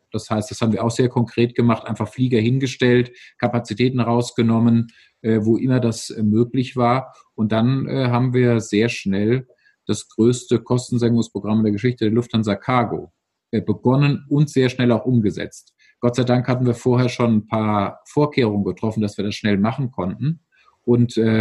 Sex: male